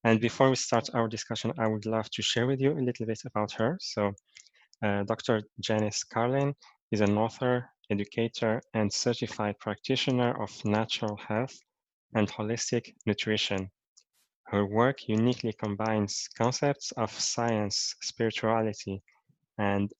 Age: 20-39